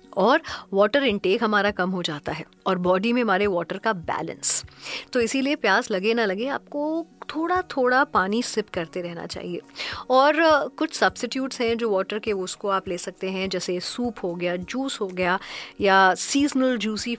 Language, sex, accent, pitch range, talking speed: Hindi, female, native, 190-250 Hz, 180 wpm